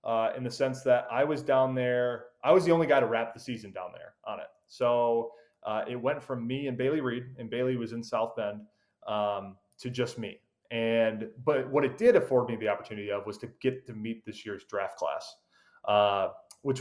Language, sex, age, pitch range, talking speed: English, male, 20-39, 110-130 Hz, 220 wpm